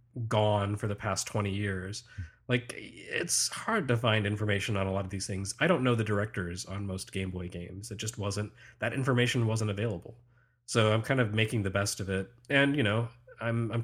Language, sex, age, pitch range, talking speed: English, male, 30-49, 105-125 Hz, 215 wpm